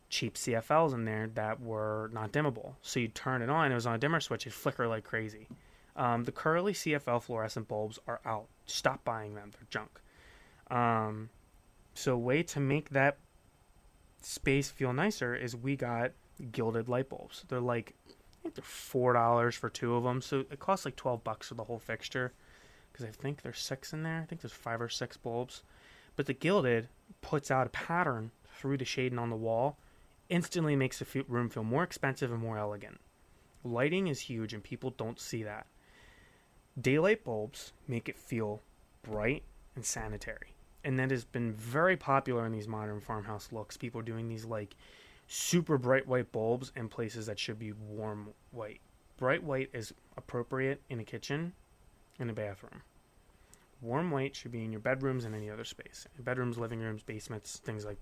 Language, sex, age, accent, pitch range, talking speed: English, male, 20-39, American, 110-135 Hz, 185 wpm